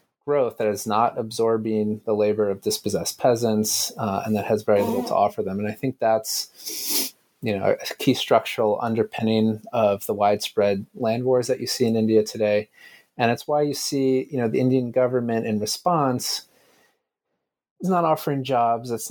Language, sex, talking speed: English, male, 180 wpm